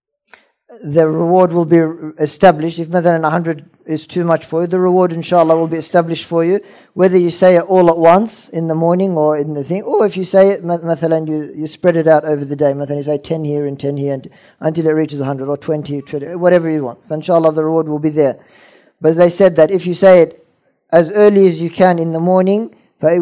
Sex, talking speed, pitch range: male, 230 wpm, 155-180 Hz